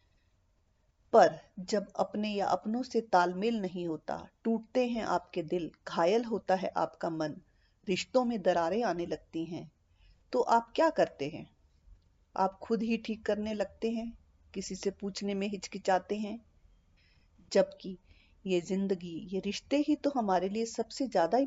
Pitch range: 155-225 Hz